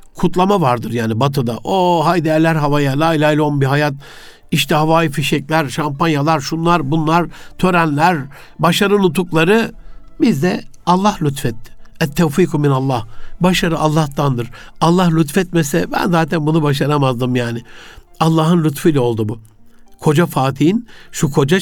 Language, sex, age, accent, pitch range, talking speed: Turkish, male, 60-79, native, 135-185 Hz, 125 wpm